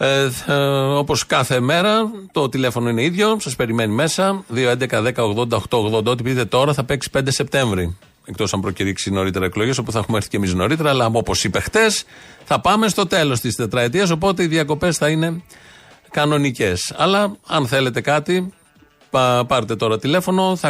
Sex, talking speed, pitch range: male, 160 wpm, 115-155 Hz